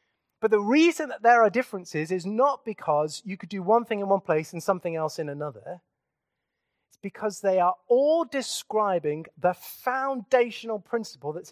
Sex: male